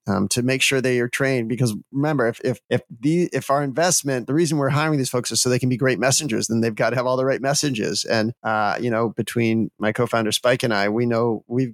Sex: male